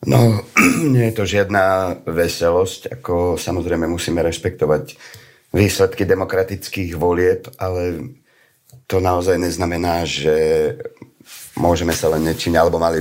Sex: male